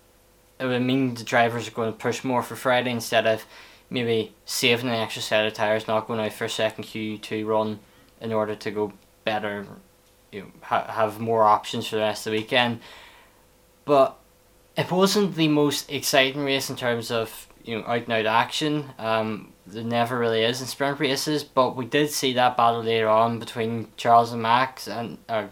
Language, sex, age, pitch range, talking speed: English, male, 10-29, 115-130 Hz, 190 wpm